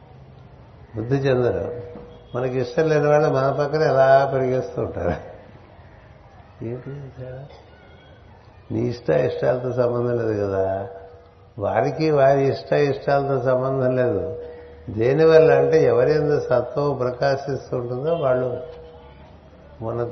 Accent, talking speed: native, 90 wpm